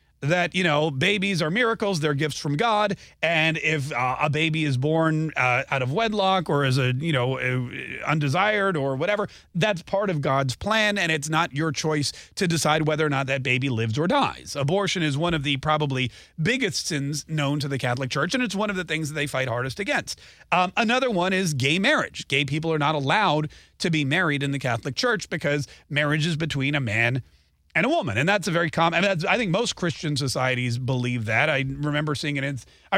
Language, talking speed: English, 220 wpm